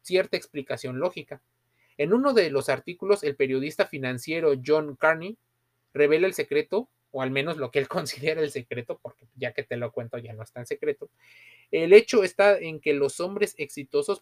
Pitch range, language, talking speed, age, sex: 130-170 Hz, Spanish, 185 wpm, 30-49, male